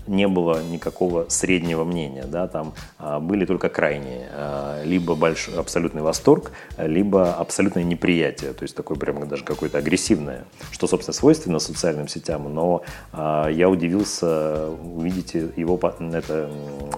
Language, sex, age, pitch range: Russian, male, 30-49, 75-90 Hz